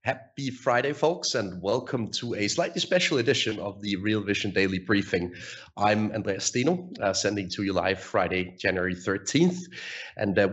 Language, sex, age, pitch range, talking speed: English, male, 30-49, 95-115 Hz, 165 wpm